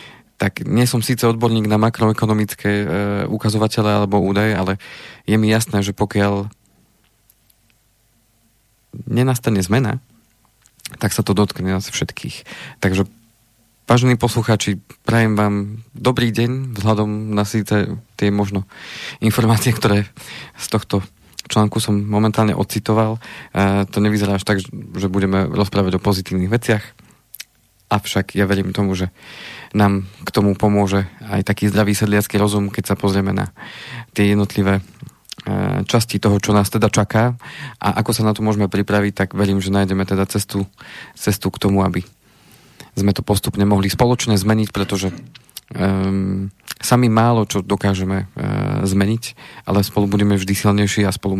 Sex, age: male, 40-59